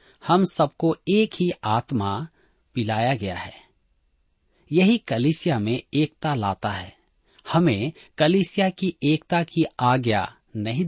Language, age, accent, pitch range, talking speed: Hindi, 40-59, native, 115-170 Hz, 115 wpm